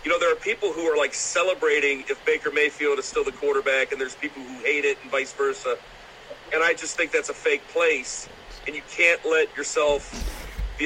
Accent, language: American, English